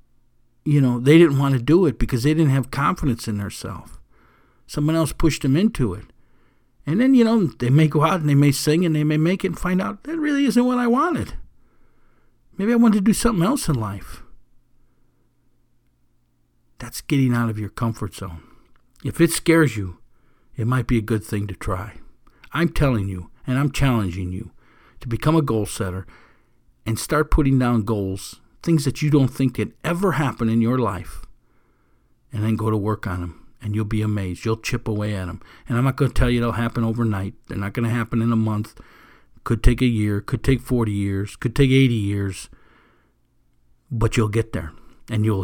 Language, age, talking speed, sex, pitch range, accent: English, 60-79, 205 wpm, male, 105-140 Hz, American